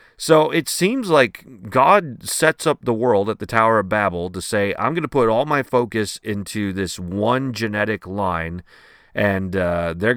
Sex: male